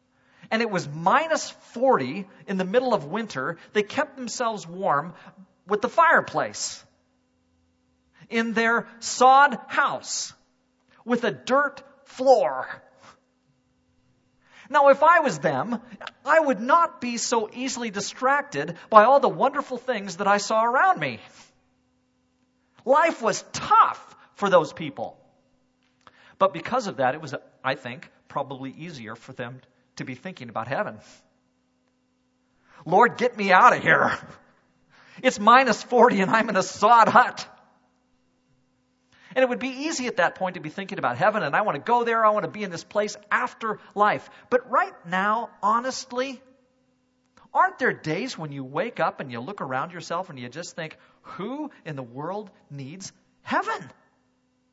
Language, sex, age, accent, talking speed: English, male, 40-59, American, 155 wpm